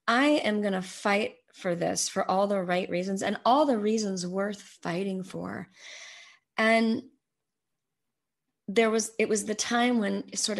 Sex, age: female, 30-49